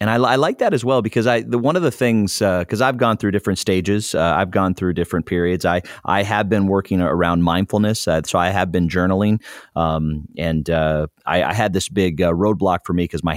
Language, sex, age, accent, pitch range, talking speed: English, male, 30-49, American, 85-100 Hz, 240 wpm